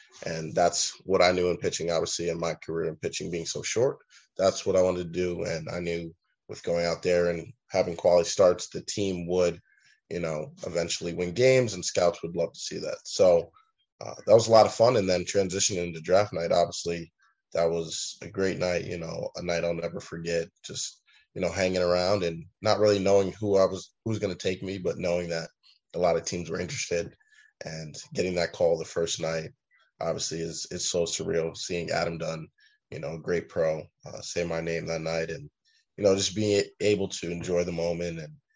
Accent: American